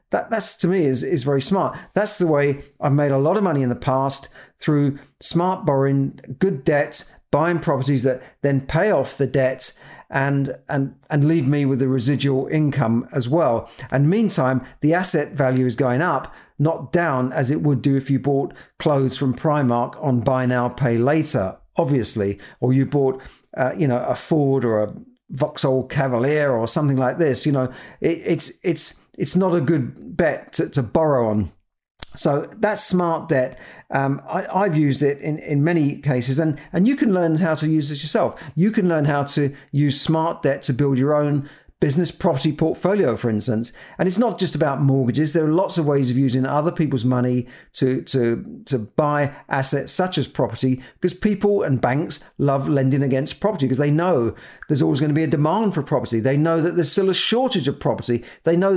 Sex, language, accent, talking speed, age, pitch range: male, English, British, 200 wpm, 50-69, 130-165 Hz